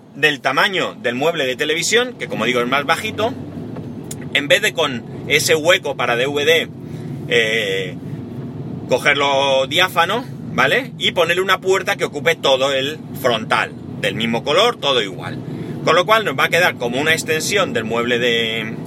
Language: Spanish